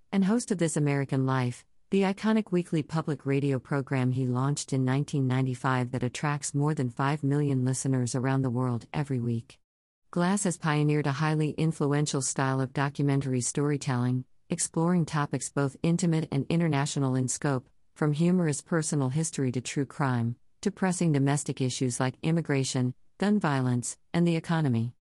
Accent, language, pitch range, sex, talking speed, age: American, English, 130-160 Hz, female, 155 wpm, 50-69